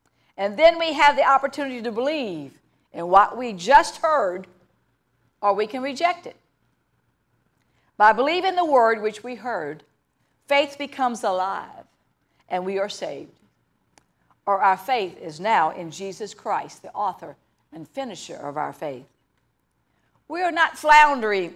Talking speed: 140 wpm